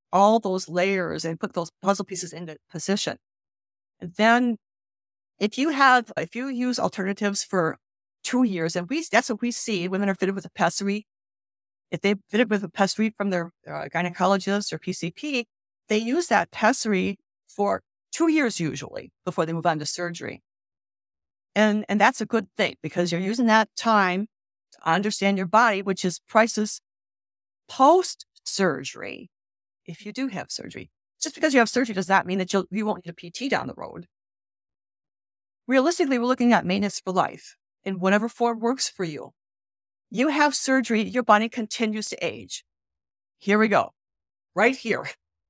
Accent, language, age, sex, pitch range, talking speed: American, English, 50-69, female, 175-230 Hz, 170 wpm